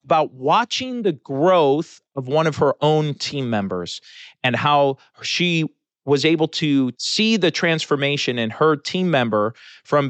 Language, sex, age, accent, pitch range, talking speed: English, male, 40-59, American, 130-170 Hz, 150 wpm